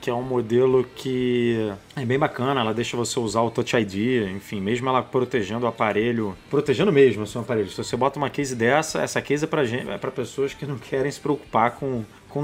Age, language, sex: 20-39, Portuguese, male